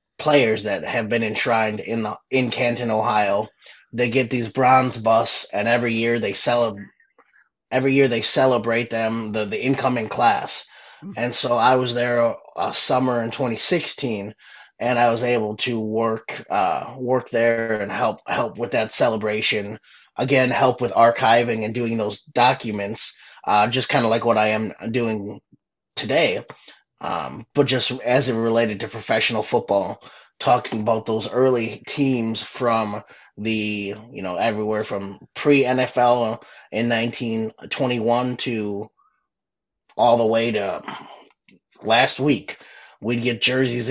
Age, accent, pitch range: 30-49, American, 110-125 Hz